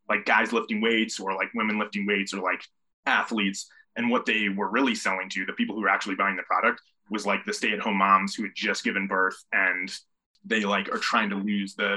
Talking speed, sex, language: 235 wpm, male, English